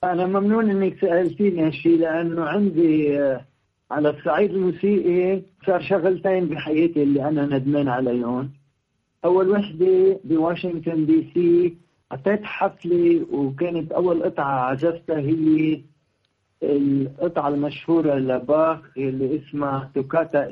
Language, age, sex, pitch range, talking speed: Arabic, 50-69, male, 145-185 Hz, 100 wpm